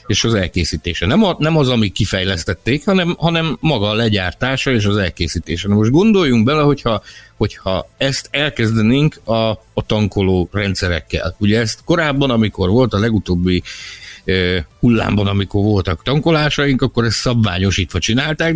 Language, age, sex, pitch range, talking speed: Hungarian, 60-79, male, 95-135 Hz, 135 wpm